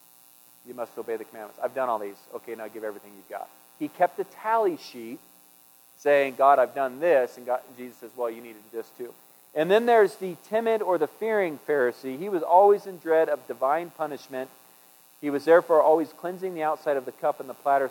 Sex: male